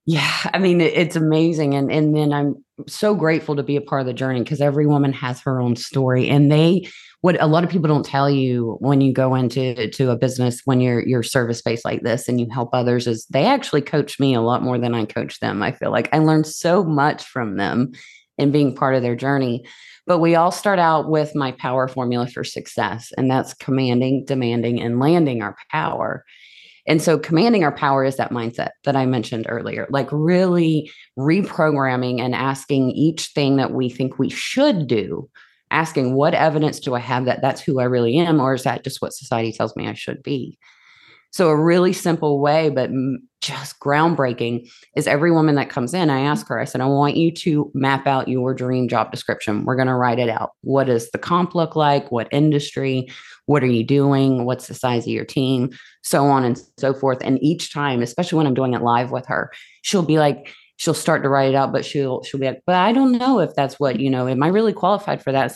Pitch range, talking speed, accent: 125-155 Hz, 225 wpm, American